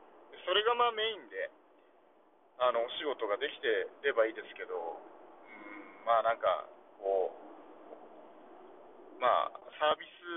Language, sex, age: Japanese, male, 40-59